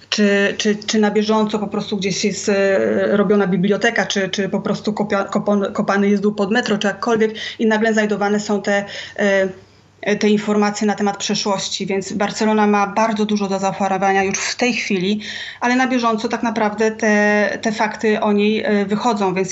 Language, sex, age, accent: Polish, female, 20-39, native